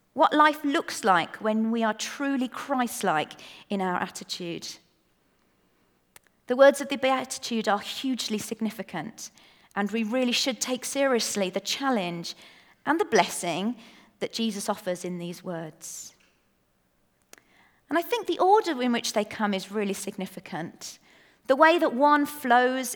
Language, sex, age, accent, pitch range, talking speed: English, female, 40-59, British, 190-280 Hz, 140 wpm